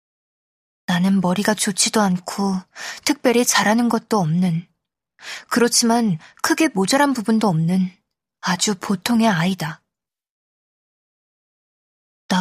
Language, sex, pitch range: Korean, female, 185-225 Hz